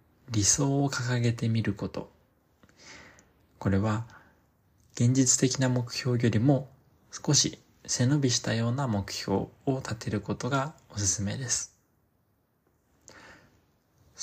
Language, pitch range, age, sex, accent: Japanese, 105-130 Hz, 20-39, male, native